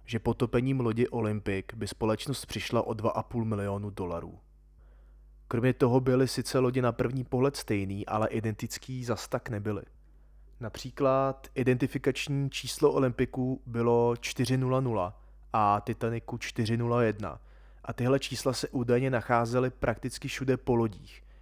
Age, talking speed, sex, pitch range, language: 20-39, 125 wpm, male, 110-125 Hz, Czech